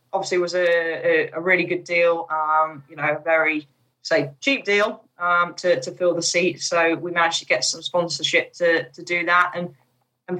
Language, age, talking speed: English, 10-29, 210 wpm